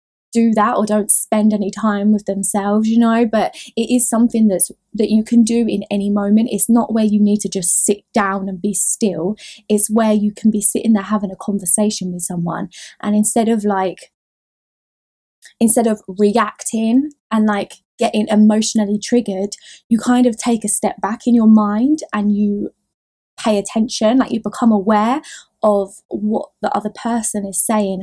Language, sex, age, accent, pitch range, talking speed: English, female, 20-39, British, 200-230 Hz, 180 wpm